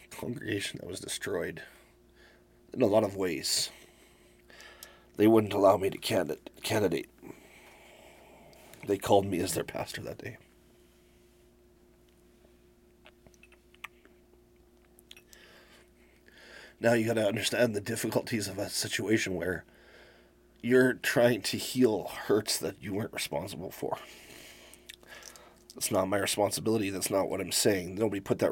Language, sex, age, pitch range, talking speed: English, male, 30-49, 95-115 Hz, 115 wpm